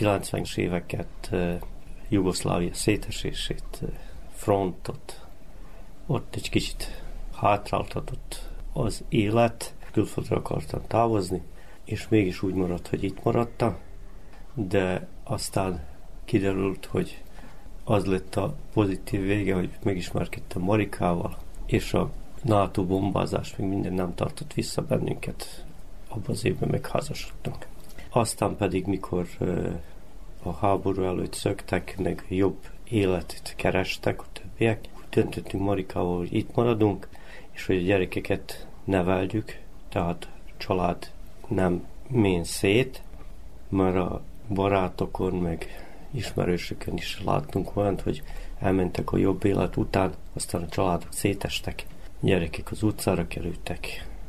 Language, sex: Hungarian, male